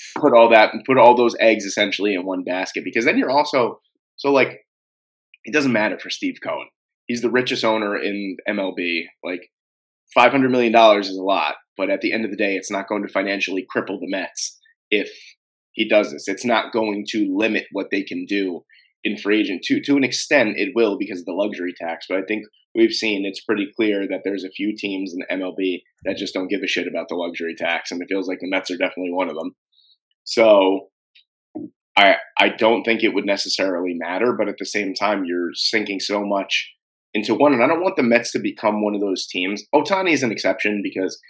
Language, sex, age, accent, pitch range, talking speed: English, male, 20-39, American, 95-115 Hz, 220 wpm